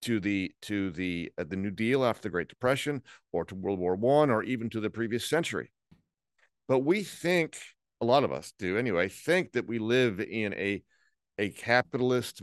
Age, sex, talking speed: 50-69, male, 195 wpm